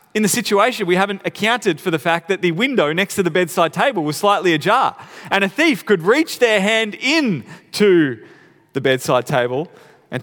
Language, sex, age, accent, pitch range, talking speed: English, male, 30-49, Australian, 145-200 Hz, 195 wpm